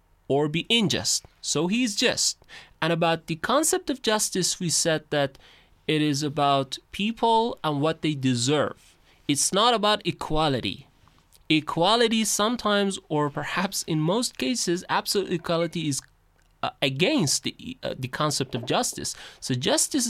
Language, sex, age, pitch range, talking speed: Persian, male, 30-49, 140-200 Hz, 140 wpm